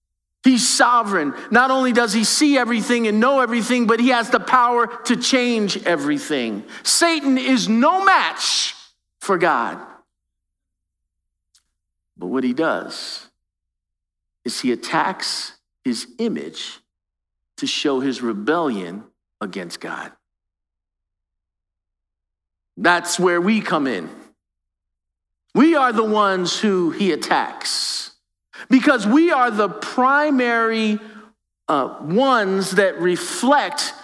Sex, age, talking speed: male, 50-69, 110 wpm